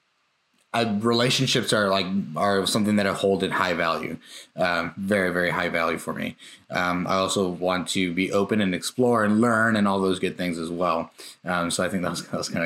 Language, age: English, 20-39